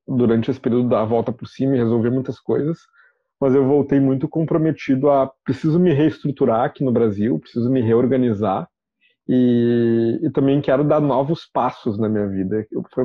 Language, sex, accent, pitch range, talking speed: Portuguese, male, Brazilian, 115-140 Hz, 170 wpm